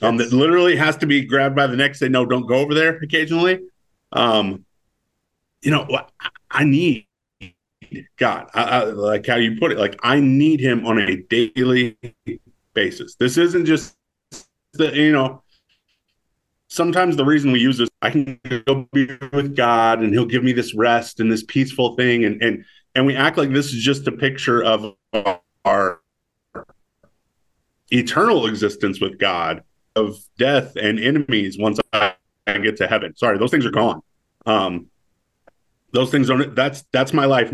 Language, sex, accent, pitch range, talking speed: English, male, American, 110-140 Hz, 170 wpm